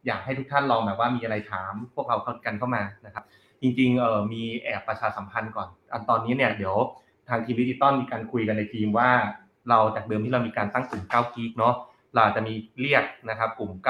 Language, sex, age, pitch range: Thai, male, 20-39, 105-125 Hz